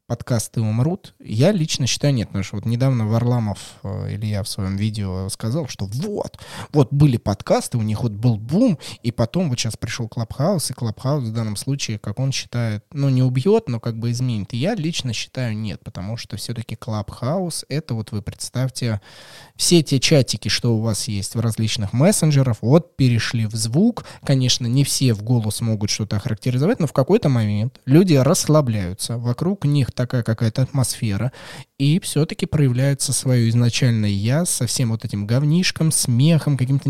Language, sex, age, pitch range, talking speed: Russian, male, 20-39, 110-140 Hz, 170 wpm